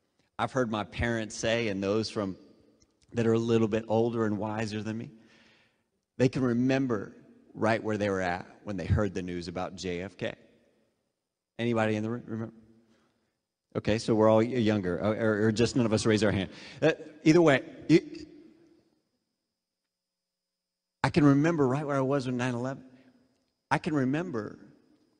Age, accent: 30-49, American